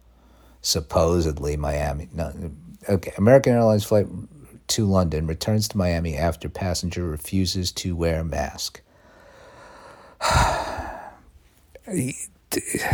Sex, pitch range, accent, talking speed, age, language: male, 80-110 Hz, American, 95 wpm, 50-69, English